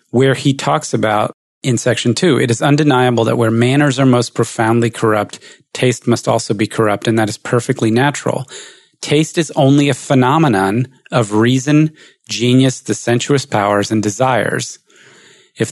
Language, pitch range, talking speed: English, 105-130 Hz, 155 wpm